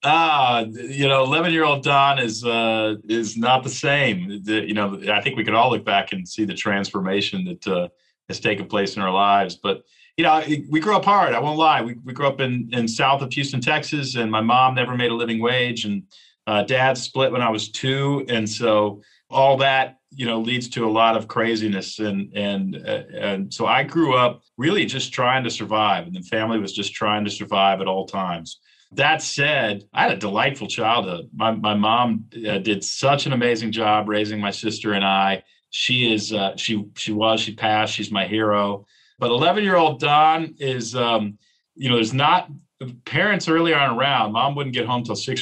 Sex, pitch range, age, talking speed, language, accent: male, 105-130 Hz, 40-59, 205 wpm, English, American